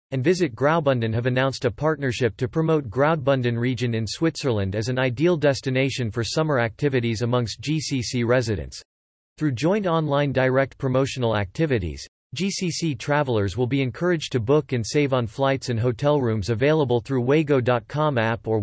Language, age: English, 40-59